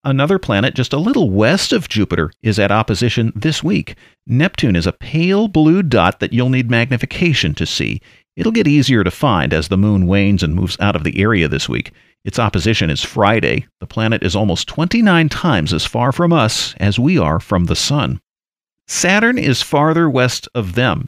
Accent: American